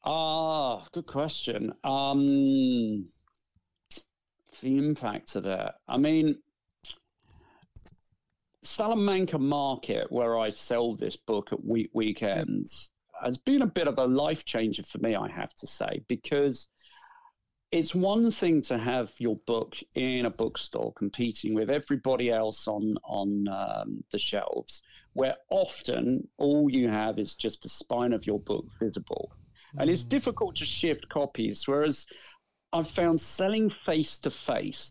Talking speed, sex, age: 130 wpm, male, 40-59